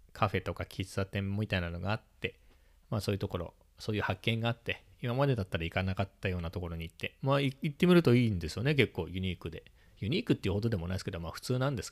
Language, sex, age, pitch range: Japanese, male, 40-59, 90-115 Hz